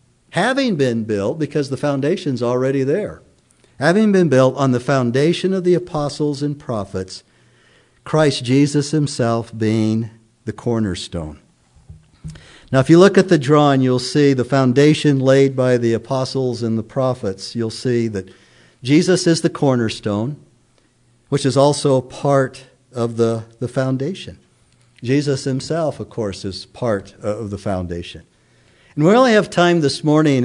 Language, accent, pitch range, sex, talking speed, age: English, American, 110-140 Hz, male, 145 wpm, 50-69